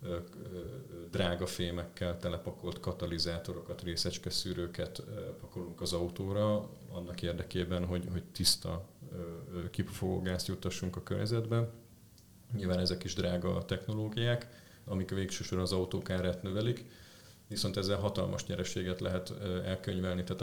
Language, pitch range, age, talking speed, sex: Hungarian, 90-100 Hz, 40-59, 100 wpm, male